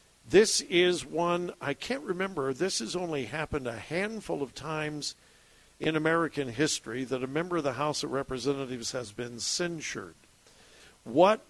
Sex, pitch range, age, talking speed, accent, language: male, 140-195 Hz, 60-79, 150 wpm, American, English